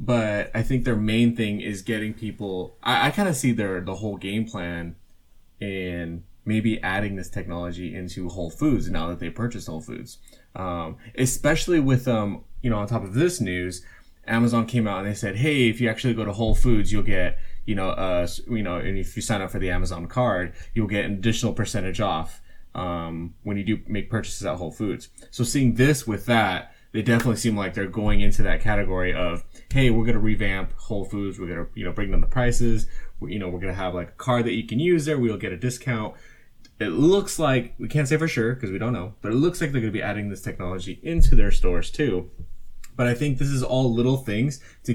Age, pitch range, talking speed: 20-39, 90-120 Hz, 230 wpm